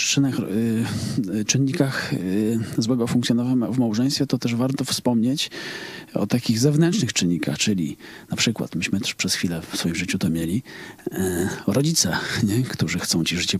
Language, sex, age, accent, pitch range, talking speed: Polish, male, 40-59, native, 95-135 Hz, 140 wpm